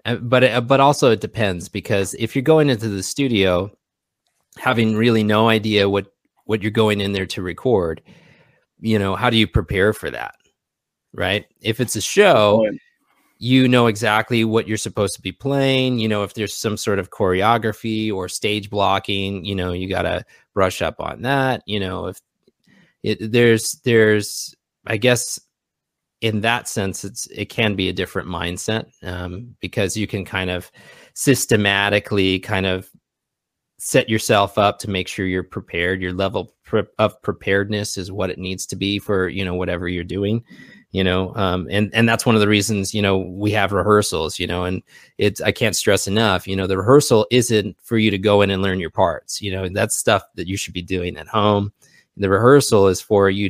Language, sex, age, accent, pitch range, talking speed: English, male, 30-49, American, 95-110 Hz, 190 wpm